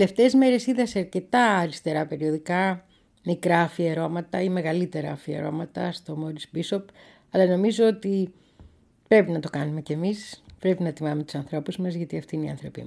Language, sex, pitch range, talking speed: Greek, female, 150-200 Hz, 165 wpm